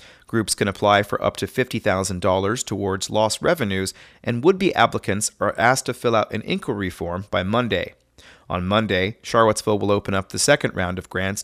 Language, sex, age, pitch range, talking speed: English, male, 30-49, 95-130 Hz, 180 wpm